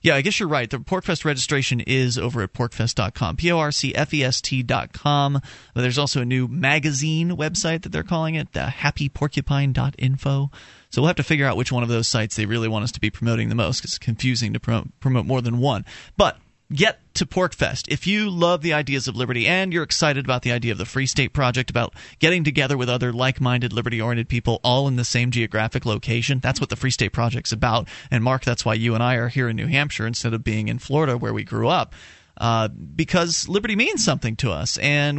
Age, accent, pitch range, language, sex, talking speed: 30-49, American, 120-160 Hz, English, male, 235 wpm